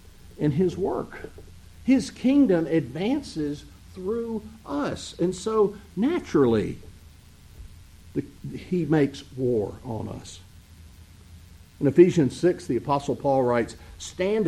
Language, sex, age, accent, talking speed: English, male, 50-69, American, 100 wpm